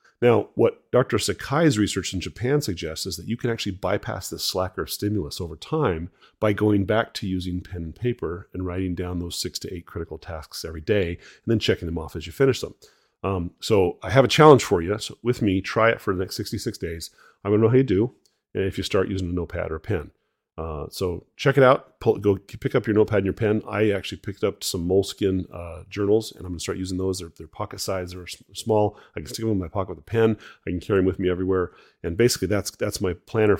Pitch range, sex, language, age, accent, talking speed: 85-105 Hz, male, English, 30-49, American, 250 wpm